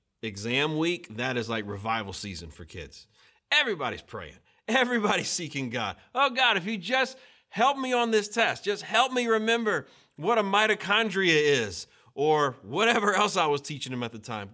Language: English